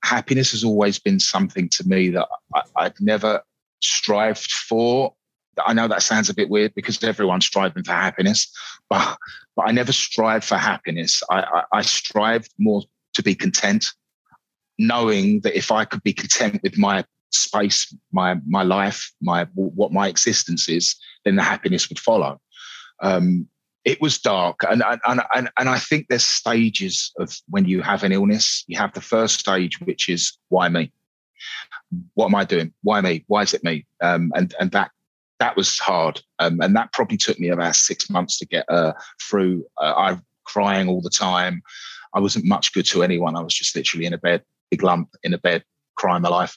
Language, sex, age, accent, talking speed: English, male, 30-49, British, 190 wpm